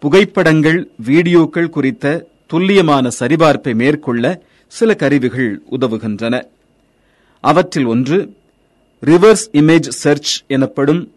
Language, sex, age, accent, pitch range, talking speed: Tamil, male, 30-49, native, 130-170 Hz, 80 wpm